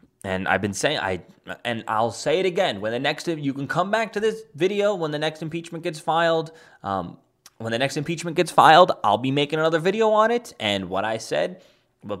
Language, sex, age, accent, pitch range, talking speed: English, male, 20-39, American, 105-150 Hz, 220 wpm